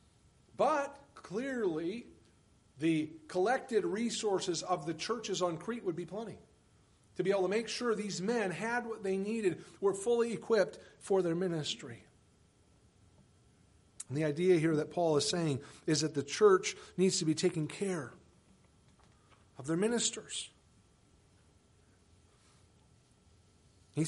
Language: English